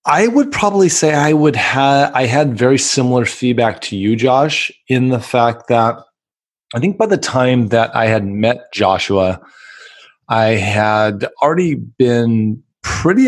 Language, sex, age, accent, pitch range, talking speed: English, male, 30-49, American, 110-135 Hz, 155 wpm